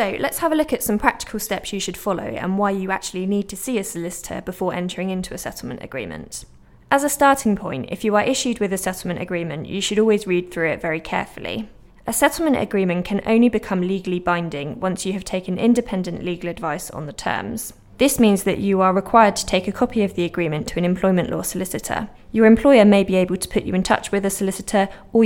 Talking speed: 230 wpm